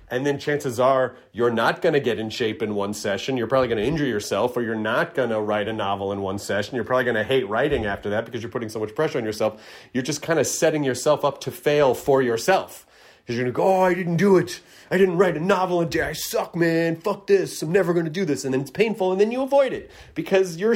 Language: English